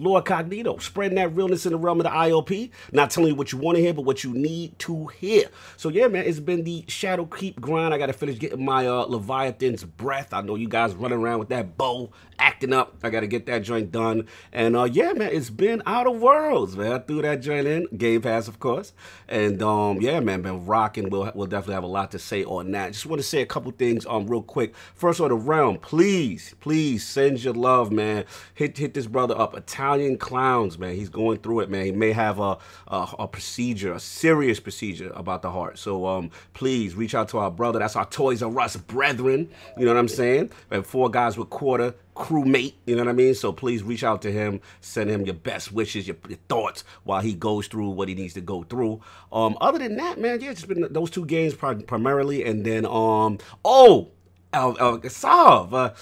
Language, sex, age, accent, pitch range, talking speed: English, male, 30-49, American, 105-150 Hz, 225 wpm